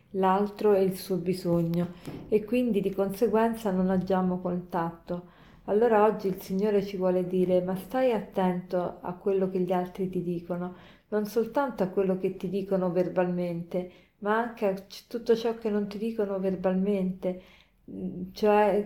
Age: 40-59